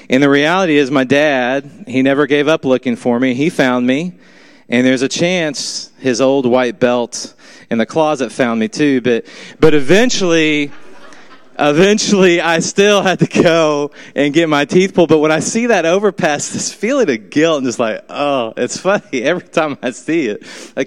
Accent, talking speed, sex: American, 190 wpm, male